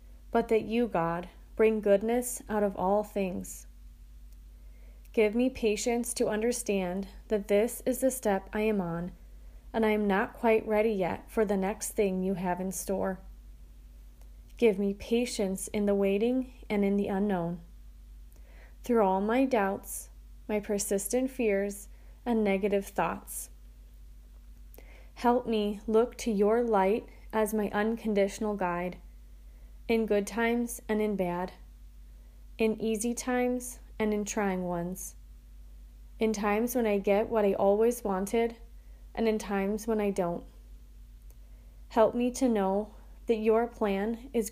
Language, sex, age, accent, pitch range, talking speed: English, female, 30-49, American, 170-225 Hz, 140 wpm